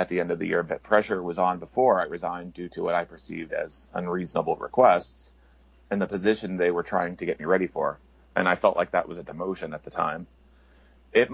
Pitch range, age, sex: 65-95 Hz, 30-49, male